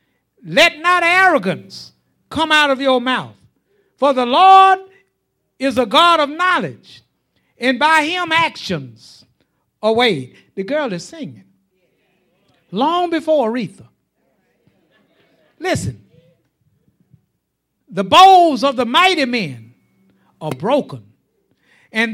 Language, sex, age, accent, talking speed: English, male, 60-79, American, 105 wpm